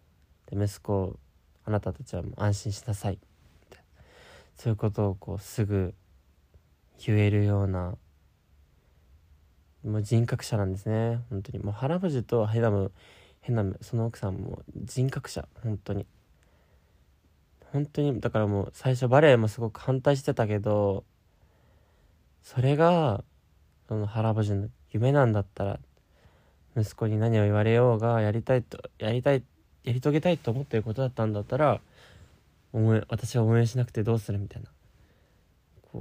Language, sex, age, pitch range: Japanese, male, 20-39, 95-120 Hz